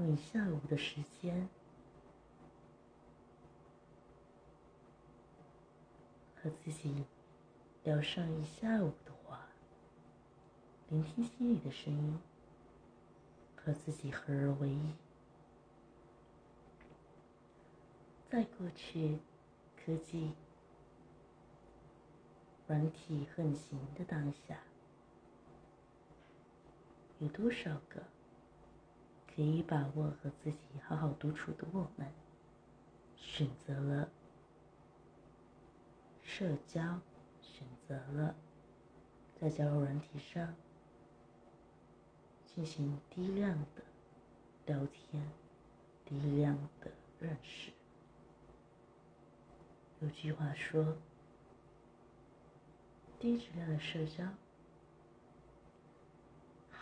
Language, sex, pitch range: Chinese, female, 145-165 Hz